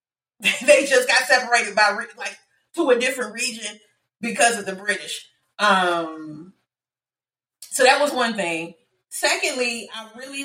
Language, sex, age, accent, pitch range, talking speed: English, female, 30-49, American, 200-255 Hz, 130 wpm